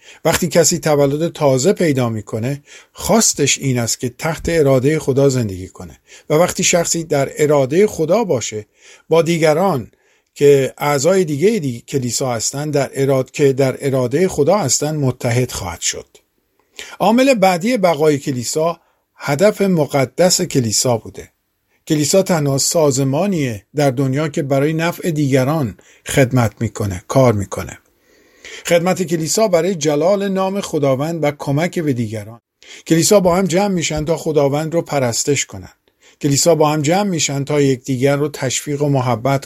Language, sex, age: Persian, male, 50-69